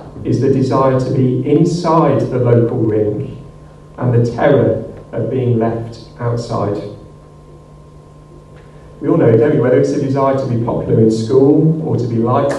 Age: 40-59